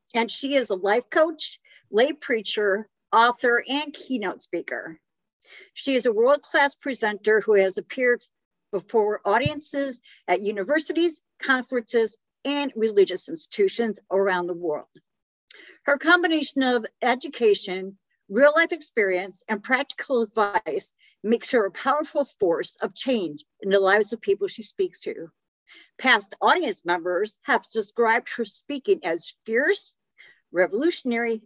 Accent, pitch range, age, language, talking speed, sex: American, 200-275 Hz, 50-69, English, 125 wpm, female